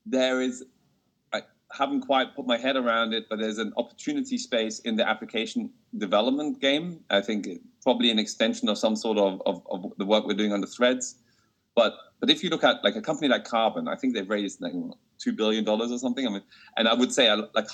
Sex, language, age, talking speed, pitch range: male, English, 30-49, 215 wpm, 95-145 Hz